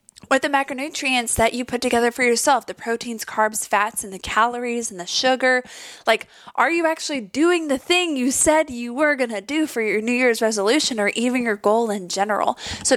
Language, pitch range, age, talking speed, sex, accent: English, 205-260 Hz, 20-39, 210 wpm, female, American